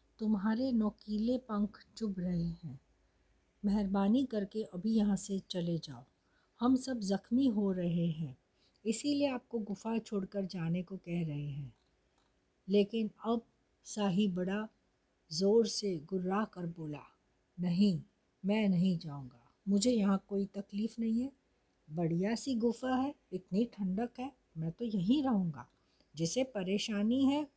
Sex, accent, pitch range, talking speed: female, native, 170-215 Hz, 135 wpm